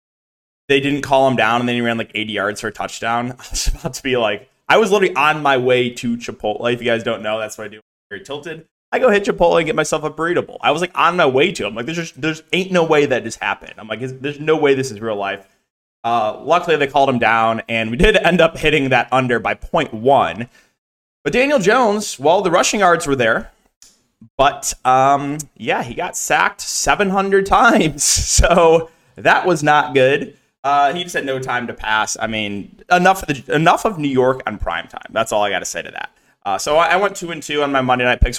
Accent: American